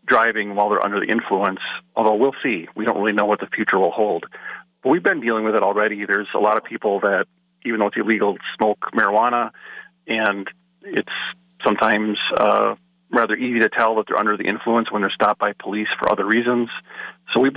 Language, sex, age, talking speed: English, male, 40-59, 205 wpm